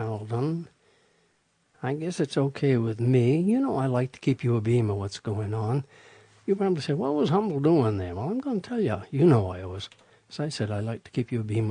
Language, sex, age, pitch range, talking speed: English, male, 60-79, 115-155 Hz, 250 wpm